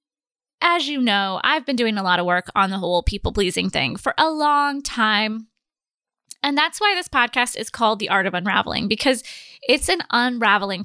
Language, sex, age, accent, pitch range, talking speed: English, female, 20-39, American, 215-270 Hz, 190 wpm